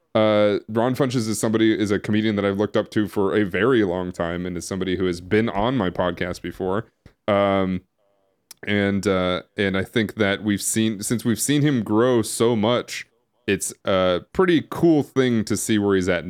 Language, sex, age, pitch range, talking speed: English, male, 20-39, 100-125 Hz, 200 wpm